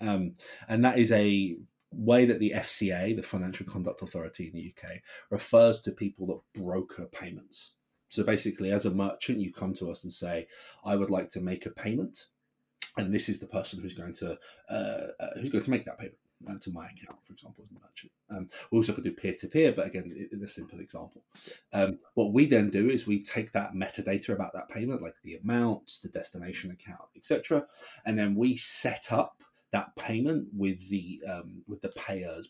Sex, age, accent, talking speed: male, 30-49, British, 205 wpm